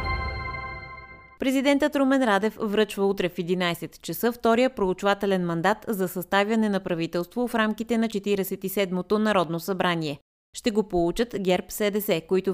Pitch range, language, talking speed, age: 180-225 Hz, Bulgarian, 130 wpm, 20-39